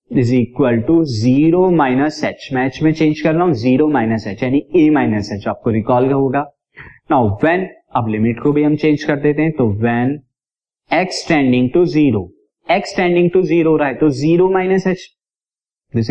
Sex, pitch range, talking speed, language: male, 120-170 Hz, 125 wpm, Hindi